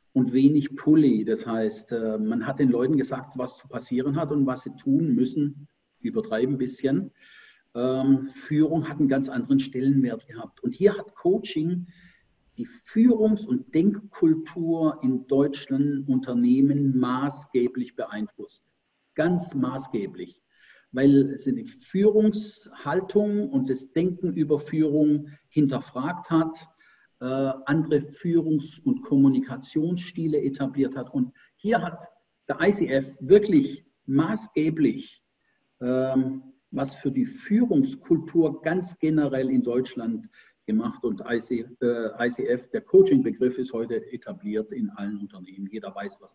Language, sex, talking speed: German, male, 120 wpm